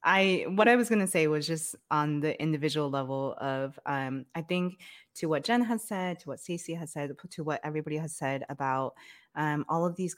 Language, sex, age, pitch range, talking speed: English, female, 20-39, 145-210 Hz, 220 wpm